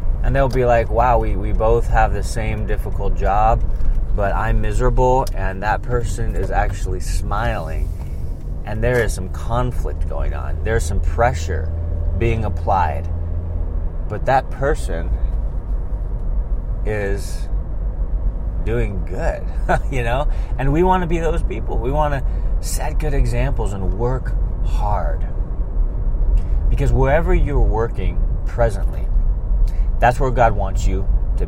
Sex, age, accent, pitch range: male, 30-49, American, 85-115 Hz